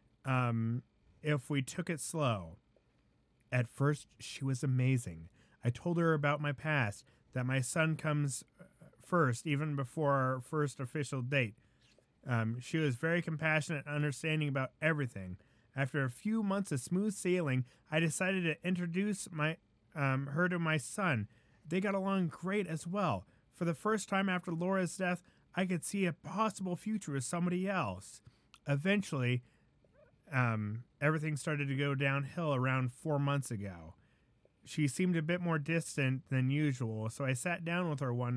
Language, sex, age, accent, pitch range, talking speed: English, male, 30-49, American, 125-170 Hz, 160 wpm